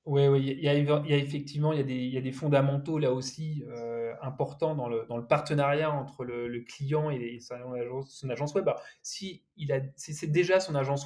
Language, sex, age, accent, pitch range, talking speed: French, male, 20-39, French, 135-180 Hz, 190 wpm